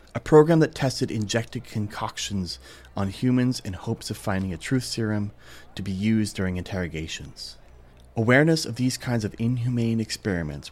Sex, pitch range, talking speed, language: male, 85-115 Hz, 150 wpm, English